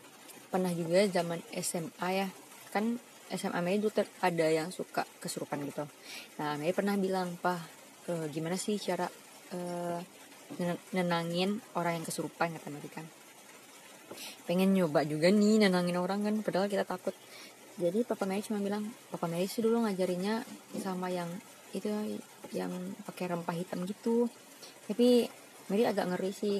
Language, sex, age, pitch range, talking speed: Indonesian, female, 20-39, 170-200 Hz, 145 wpm